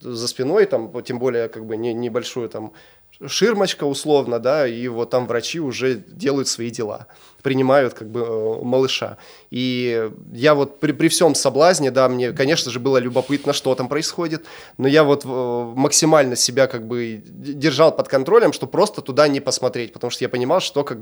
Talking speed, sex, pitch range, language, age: 175 wpm, male, 120-145 Hz, Russian, 20-39